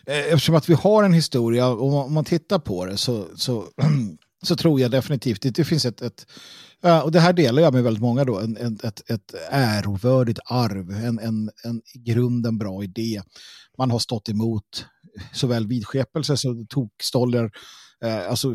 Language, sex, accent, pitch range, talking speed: Swedish, male, native, 115-150 Hz, 180 wpm